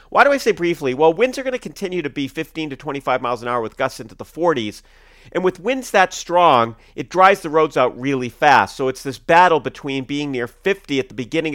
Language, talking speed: English, 245 wpm